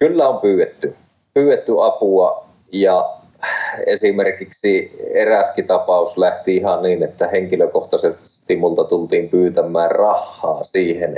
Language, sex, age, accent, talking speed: Finnish, male, 30-49, native, 100 wpm